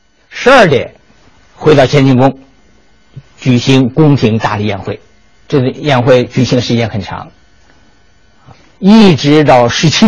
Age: 50-69